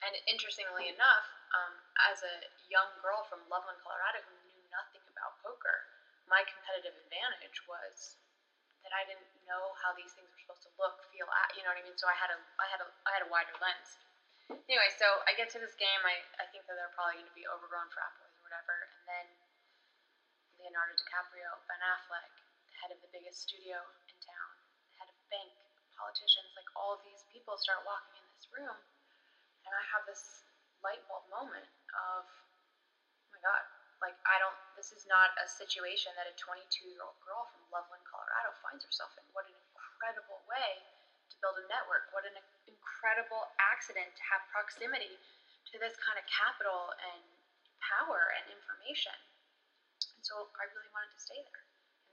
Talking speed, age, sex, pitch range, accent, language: 185 wpm, 10-29, female, 180-210 Hz, American, English